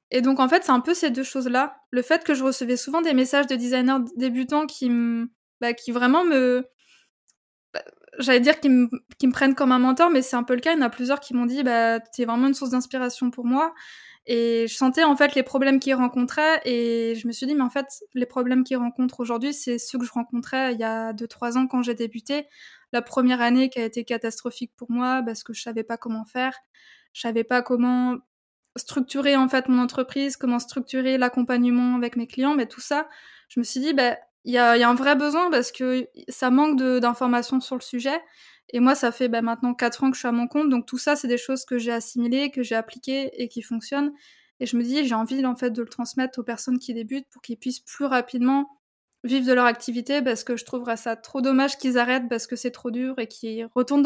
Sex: female